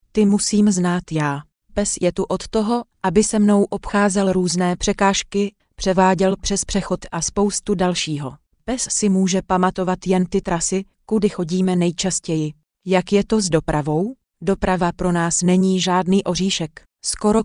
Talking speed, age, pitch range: 150 wpm, 30-49, 175-195 Hz